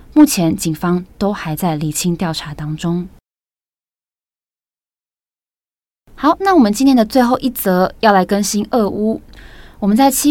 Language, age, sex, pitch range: Chinese, 20-39, female, 170-225 Hz